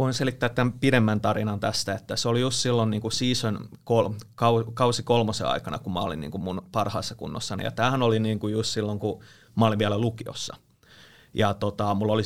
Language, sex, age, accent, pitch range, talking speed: Finnish, male, 30-49, native, 105-115 Hz, 160 wpm